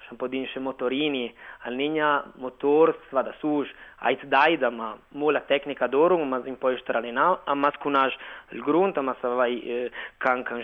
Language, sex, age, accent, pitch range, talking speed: Italian, male, 20-39, native, 130-160 Hz, 140 wpm